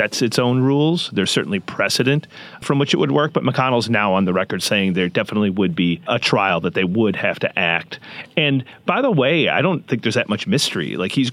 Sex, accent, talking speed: male, American, 235 wpm